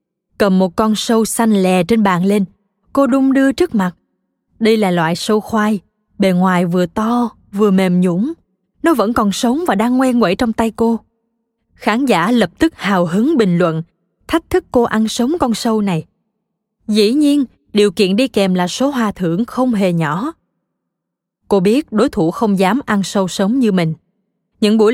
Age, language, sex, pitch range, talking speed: 20-39, Vietnamese, female, 190-230 Hz, 190 wpm